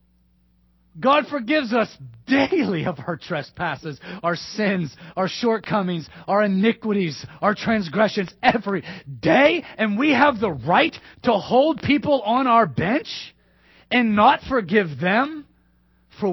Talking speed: 120 wpm